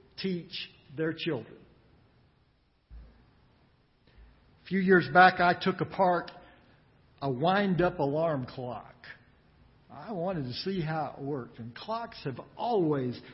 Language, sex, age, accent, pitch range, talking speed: English, male, 60-79, American, 160-240 Hz, 110 wpm